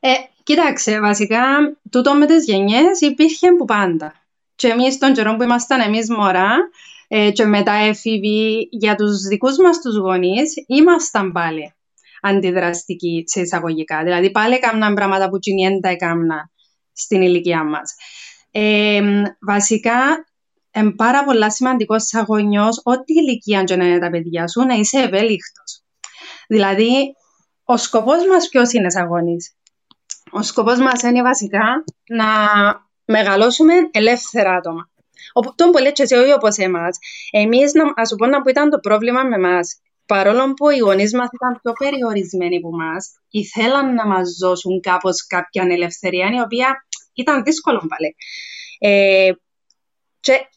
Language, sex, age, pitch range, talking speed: Greek, female, 20-39, 195-265 Hz, 140 wpm